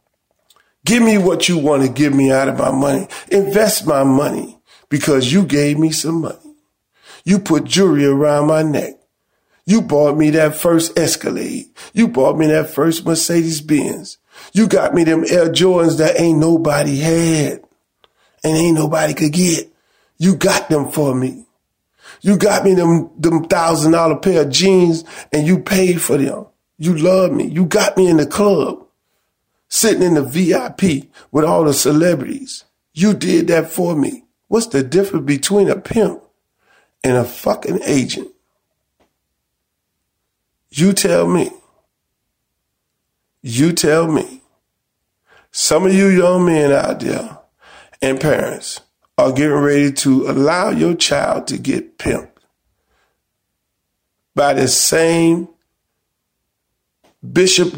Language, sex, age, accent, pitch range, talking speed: English, male, 40-59, American, 145-185 Hz, 140 wpm